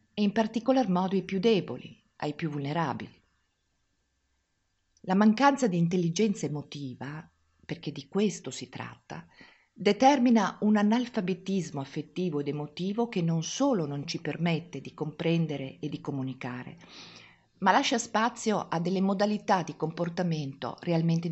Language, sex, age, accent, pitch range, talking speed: Italian, female, 50-69, native, 145-195 Hz, 130 wpm